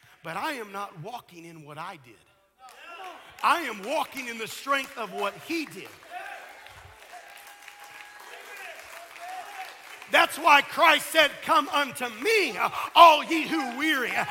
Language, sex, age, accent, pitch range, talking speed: English, male, 50-69, American, 300-375 Hz, 125 wpm